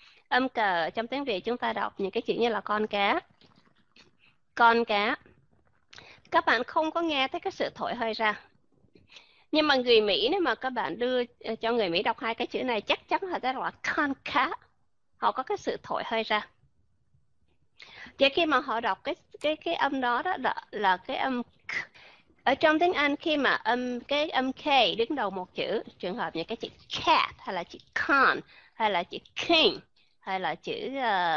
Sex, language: female, Vietnamese